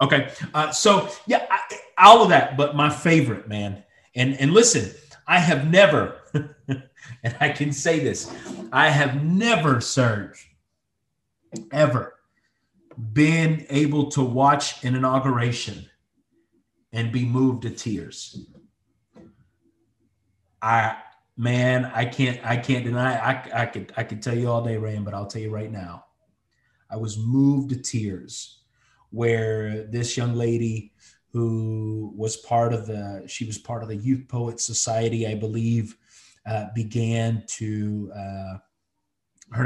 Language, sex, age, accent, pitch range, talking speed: English, male, 30-49, American, 110-135 Hz, 140 wpm